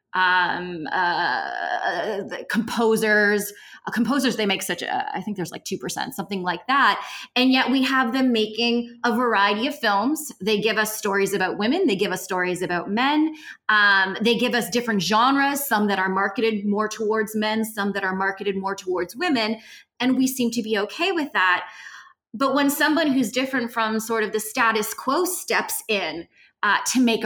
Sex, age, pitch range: female, 20-39, 195-245 Hz